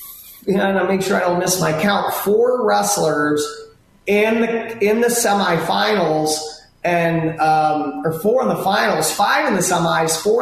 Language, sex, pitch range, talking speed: English, male, 160-195 Hz, 165 wpm